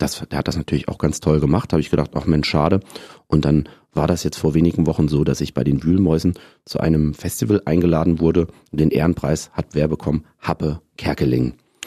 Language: German